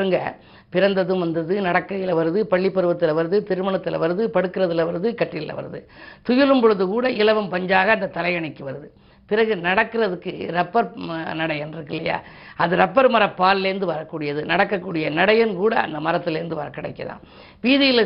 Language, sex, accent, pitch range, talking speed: Tamil, female, native, 160-200 Hz, 35 wpm